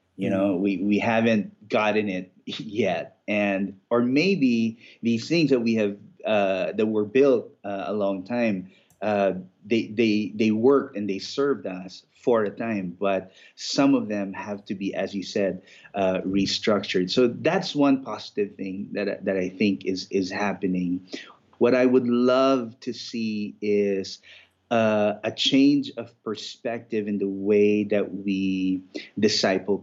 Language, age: English, 30-49